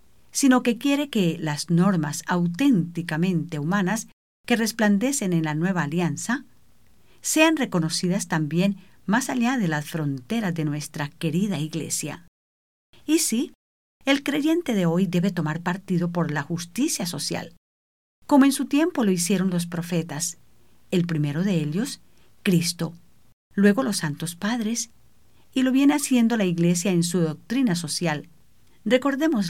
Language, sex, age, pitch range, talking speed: English, female, 50-69, 160-235 Hz, 135 wpm